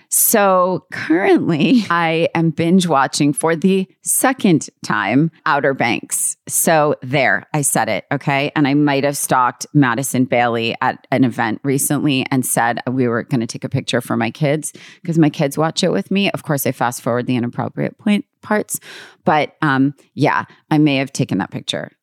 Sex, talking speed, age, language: female, 175 wpm, 30-49, English